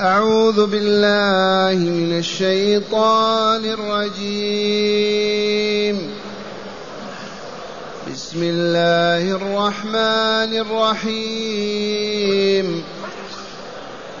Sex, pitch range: male, 175-215 Hz